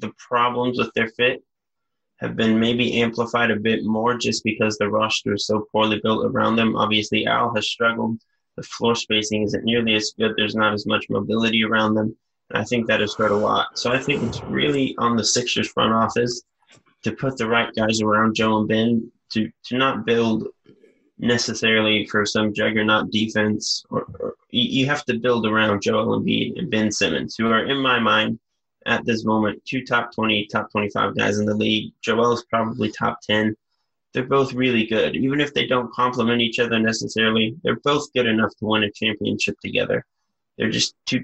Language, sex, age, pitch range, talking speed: English, male, 20-39, 110-120 Hz, 195 wpm